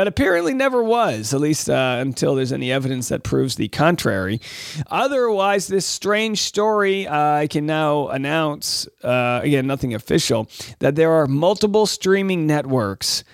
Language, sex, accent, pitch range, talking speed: English, male, American, 135-190 Hz, 155 wpm